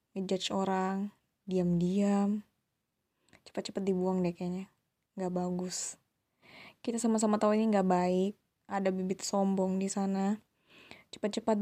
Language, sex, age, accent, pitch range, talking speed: Indonesian, female, 20-39, native, 195-220 Hz, 110 wpm